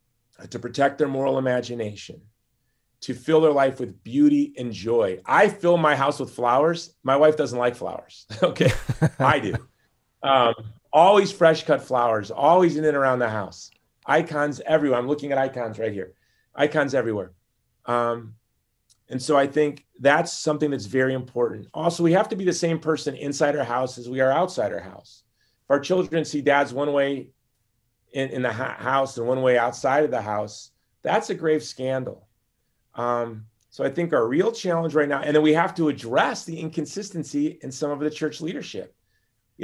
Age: 30-49